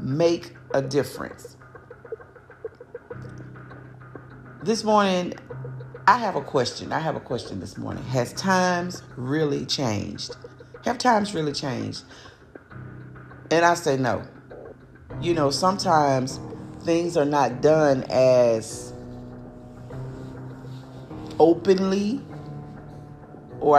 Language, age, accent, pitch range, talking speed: English, 40-59, American, 125-165 Hz, 95 wpm